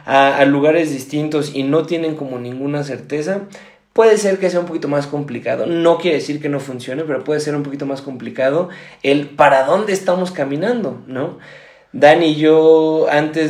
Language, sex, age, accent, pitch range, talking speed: Spanish, male, 20-39, Mexican, 135-165 Hz, 180 wpm